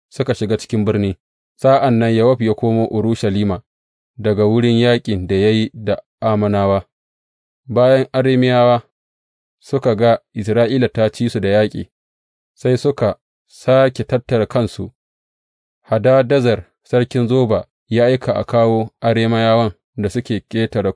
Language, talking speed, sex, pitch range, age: English, 115 wpm, male, 100-120 Hz, 30-49